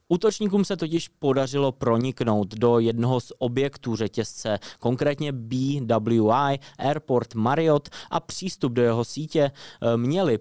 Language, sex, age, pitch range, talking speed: Czech, male, 20-39, 115-140 Hz, 115 wpm